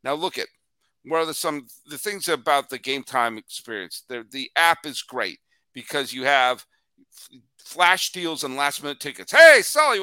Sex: male